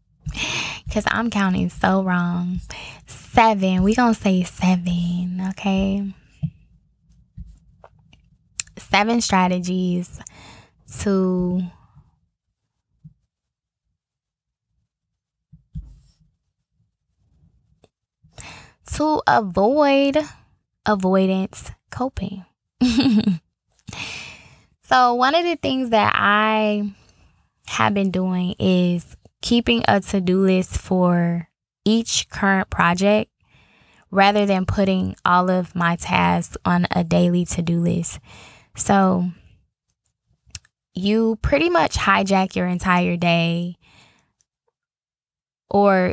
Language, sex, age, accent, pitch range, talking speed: English, female, 10-29, American, 175-205 Hz, 75 wpm